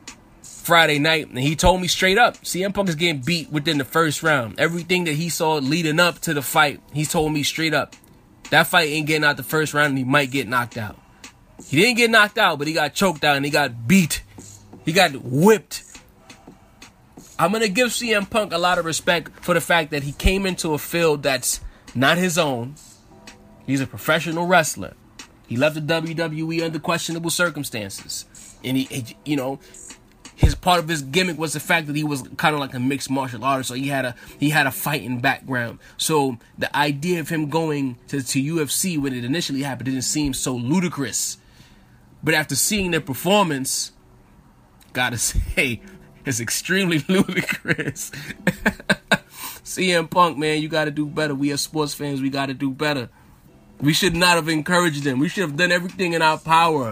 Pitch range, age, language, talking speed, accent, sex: 135-170 Hz, 20-39, English, 195 wpm, American, male